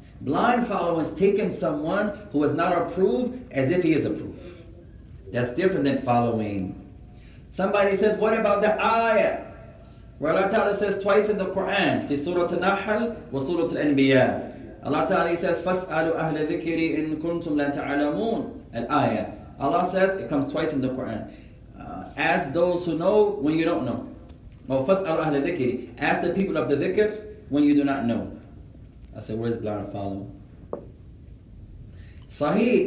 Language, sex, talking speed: English, male, 140 wpm